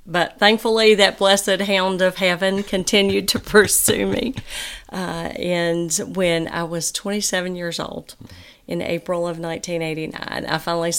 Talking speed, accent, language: 135 wpm, American, English